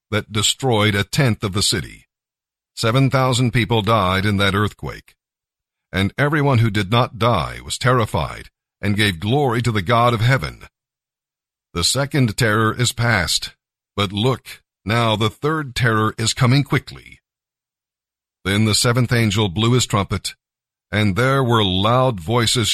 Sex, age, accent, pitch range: male, 50-69, American, 100-130 Hz